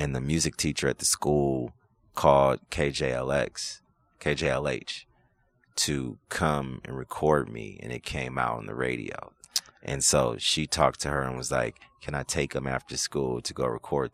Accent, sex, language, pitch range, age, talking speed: American, male, English, 70-85 Hz, 30-49, 165 wpm